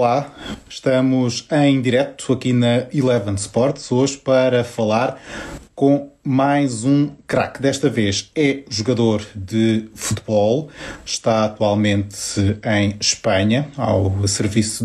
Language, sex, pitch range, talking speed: Portuguese, male, 105-130 Hz, 110 wpm